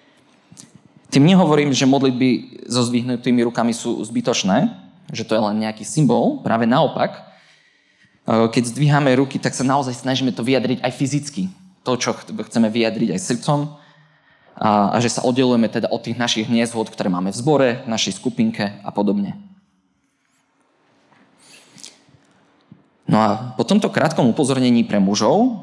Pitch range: 115-145 Hz